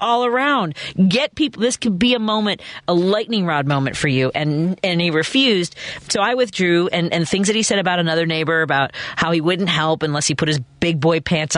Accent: American